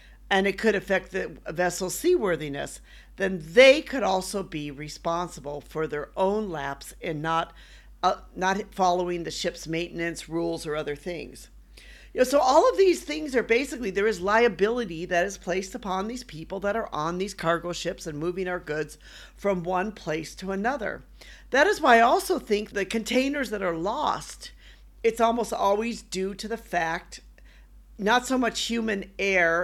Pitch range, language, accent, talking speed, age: 170-230 Hz, English, American, 170 wpm, 50-69